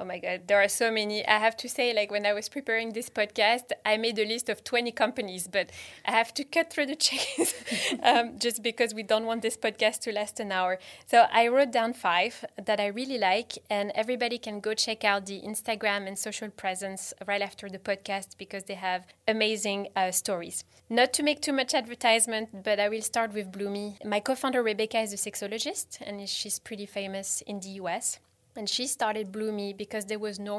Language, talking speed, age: English, 210 wpm, 20-39